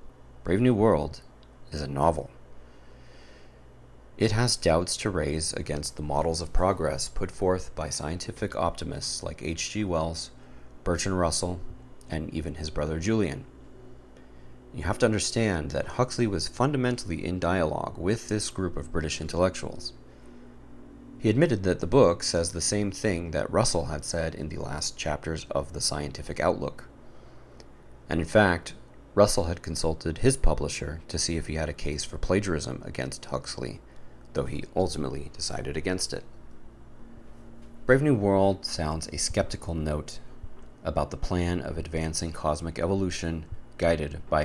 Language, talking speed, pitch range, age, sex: English, 145 wpm, 75-100 Hz, 30-49, male